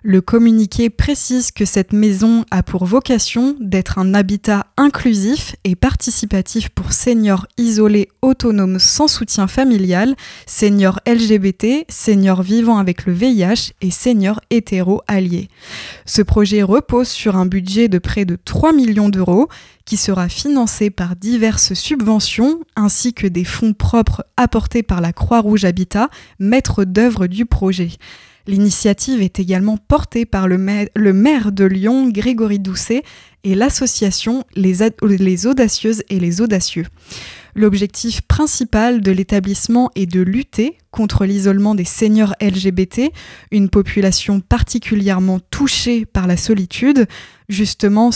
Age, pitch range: 20-39, 195-235 Hz